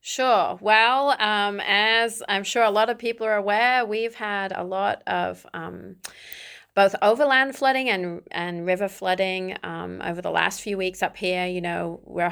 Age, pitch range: 30-49, 180-210 Hz